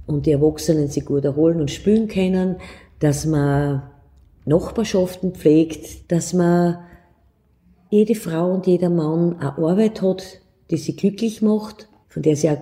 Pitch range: 145-190 Hz